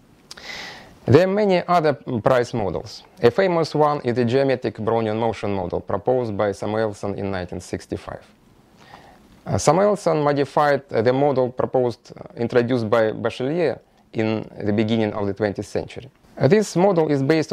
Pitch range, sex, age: 115-155 Hz, male, 30-49